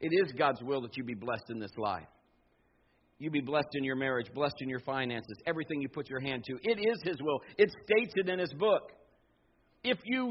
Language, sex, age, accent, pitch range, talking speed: English, male, 50-69, American, 150-210 Hz, 225 wpm